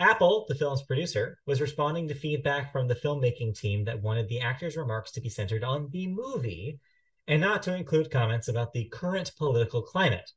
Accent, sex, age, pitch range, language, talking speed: American, male, 30-49, 115-155 Hz, English, 190 wpm